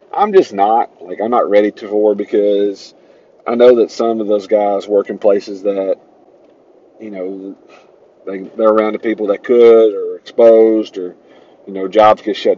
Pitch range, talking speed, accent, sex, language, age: 100-130 Hz, 180 wpm, American, male, English, 40-59